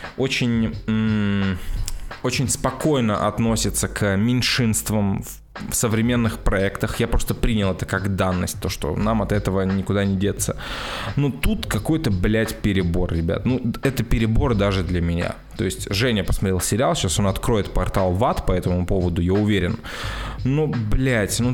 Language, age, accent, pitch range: Russian, 20-39, native, 95-120 Hz